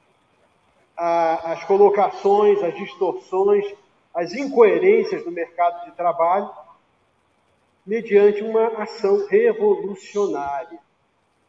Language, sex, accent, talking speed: Portuguese, male, Brazilian, 75 wpm